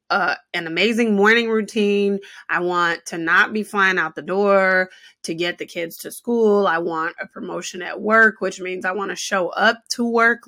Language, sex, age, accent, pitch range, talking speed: English, female, 20-39, American, 180-220 Hz, 200 wpm